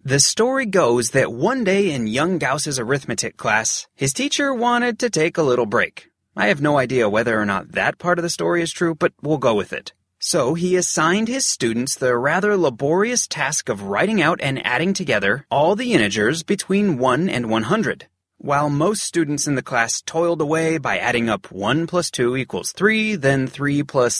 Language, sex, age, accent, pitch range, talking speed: English, male, 30-49, American, 130-195 Hz, 195 wpm